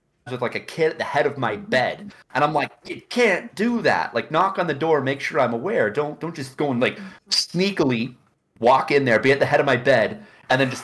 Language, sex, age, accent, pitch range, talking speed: English, male, 30-49, American, 120-150 Hz, 255 wpm